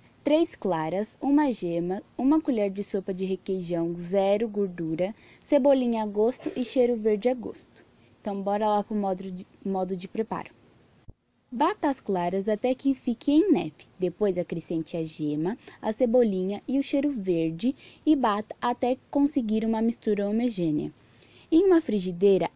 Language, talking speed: Portuguese, 155 wpm